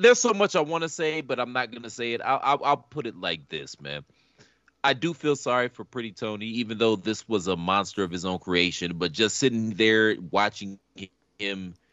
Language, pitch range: English, 90-125 Hz